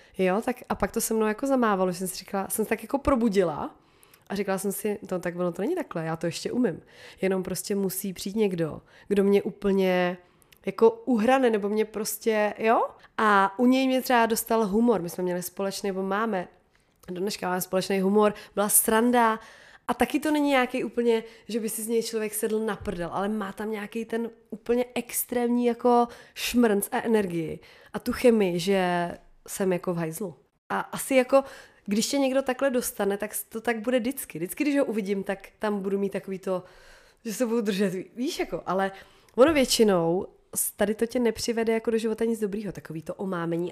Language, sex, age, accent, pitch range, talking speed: Czech, female, 20-39, native, 190-230 Hz, 195 wpm